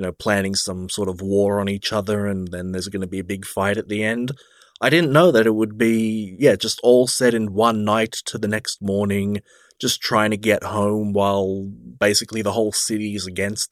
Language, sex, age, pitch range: English, male, 20-39, 100-120 Hz